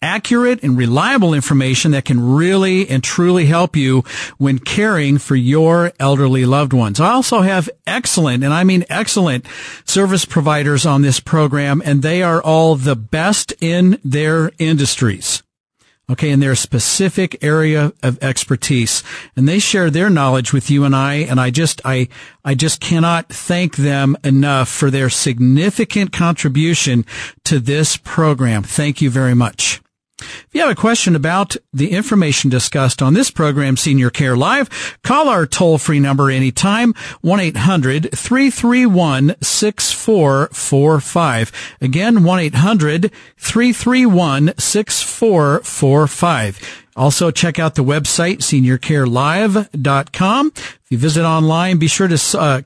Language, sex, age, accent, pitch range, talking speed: English, male, 50-69, American, 135-175 Hz, 130 wpm